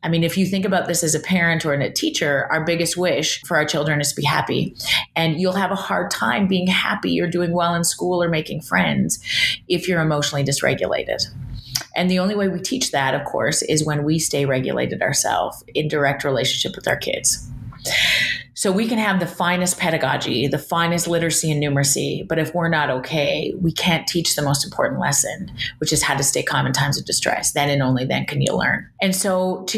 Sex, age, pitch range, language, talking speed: female, 30-49, 140-175 Hz, English, 220 wpm